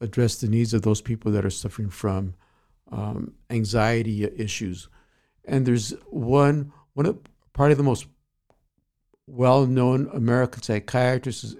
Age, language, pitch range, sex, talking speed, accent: 60-79, English, 105-125 Hz, male, 135 wpm, American